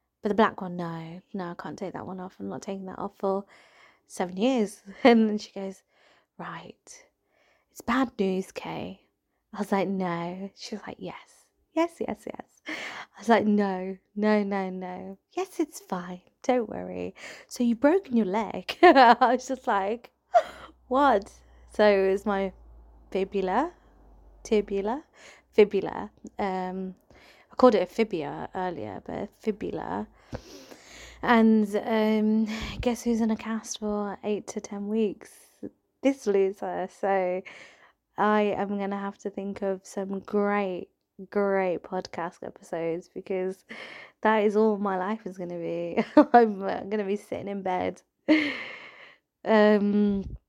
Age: 20-39